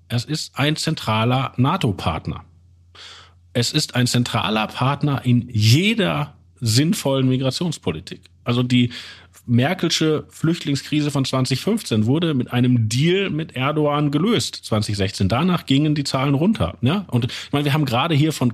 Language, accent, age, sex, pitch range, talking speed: German, German, 40-59, male, 105-150 Hz, 135 wpm